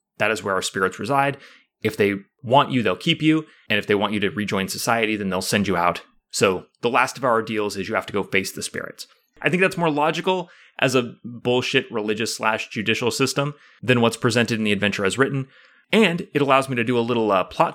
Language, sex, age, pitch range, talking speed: English, male, 30-49, 105-140 Hz, 235 wpm